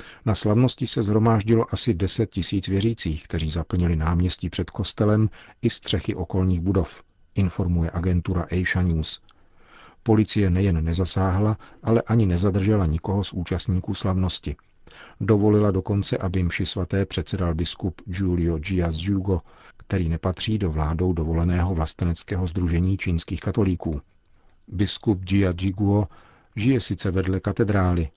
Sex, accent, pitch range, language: male, native, 85-105 Hz, Czech